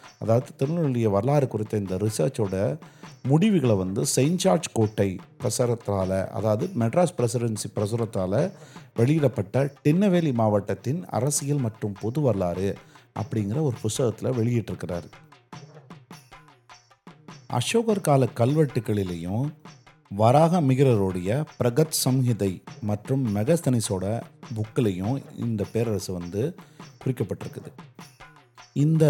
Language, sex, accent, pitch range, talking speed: Tamil, male, native, 110-150 Hz, 85 wpm